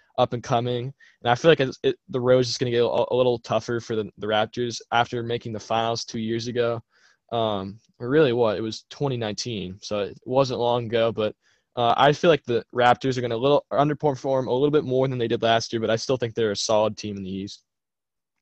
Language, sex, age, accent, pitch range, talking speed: English, male, 10-29, American, 115-130 Hz, 235 wpm